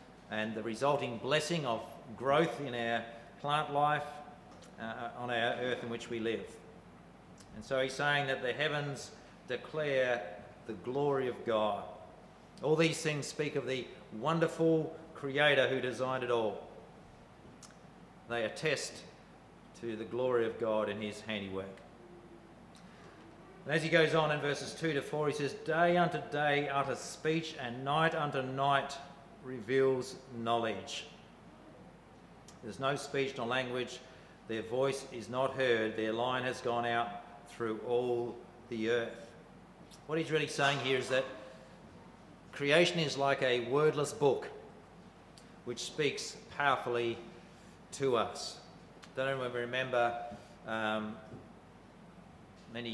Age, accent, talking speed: 40-59, Australian, 135 wpm